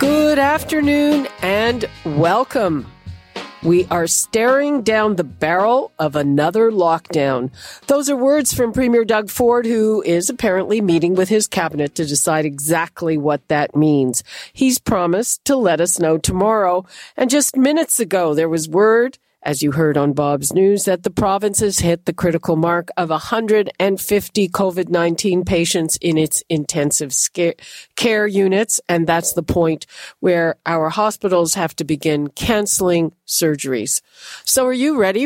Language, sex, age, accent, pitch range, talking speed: English, female, 50-69, American, 165-215 Hz, 145 wpm